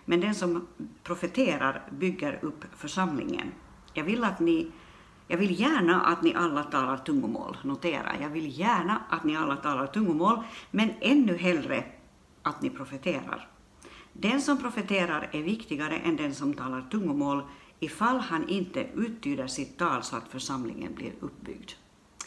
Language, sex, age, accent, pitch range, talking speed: Swedish, female, 60-79, native, 145-220 Hz, 140 wpm